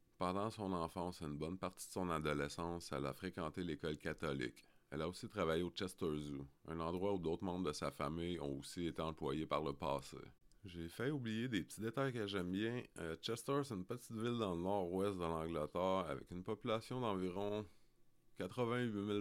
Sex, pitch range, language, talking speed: male, 80-100 Hz, French, 195 wpm